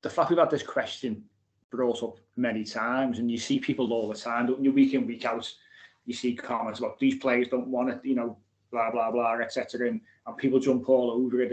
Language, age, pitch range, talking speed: English, 30-49, 115-135 Hz, 230 wpm